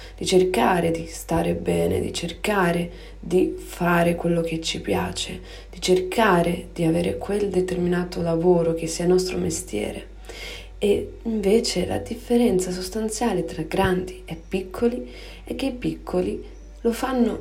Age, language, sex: 30-49, Italian, female